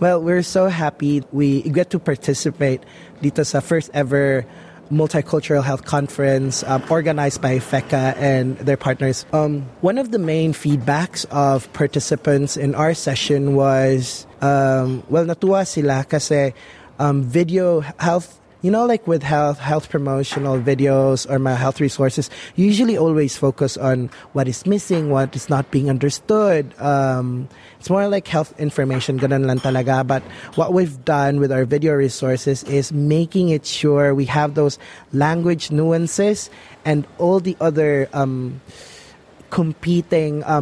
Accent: native